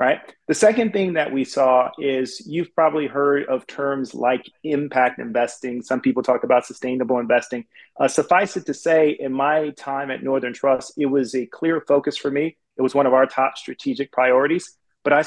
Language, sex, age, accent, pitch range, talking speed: English, male, 40-59, American, 125-155 Hz, 195 wpm